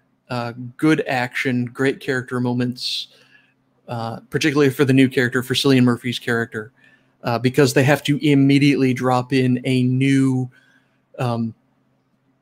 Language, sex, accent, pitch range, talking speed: English, male, American, 120-135 Hz, 130 wpm